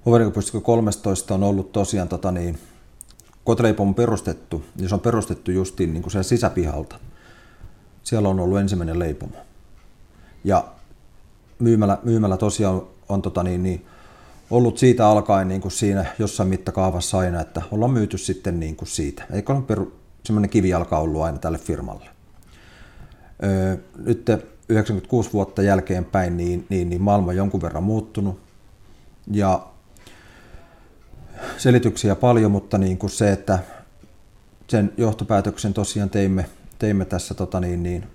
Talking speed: 130 wpm